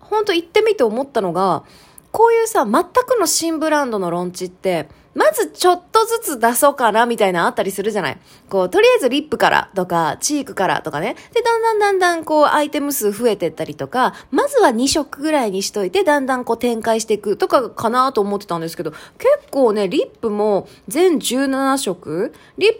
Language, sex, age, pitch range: Japanese, female, 20-39, 195-310 Hz